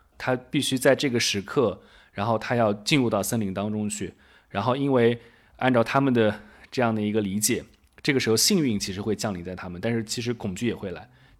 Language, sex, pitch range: Chinese, male, 100-130 Hz